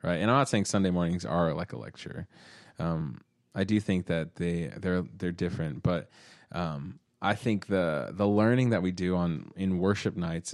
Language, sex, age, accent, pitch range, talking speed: English, male, 20-39, American, 85-100 Hz, 195 wpm